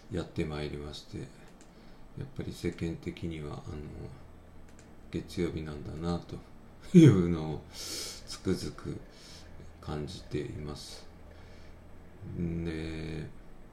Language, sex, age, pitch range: Japanese, male, 50-69, 80-95 Hz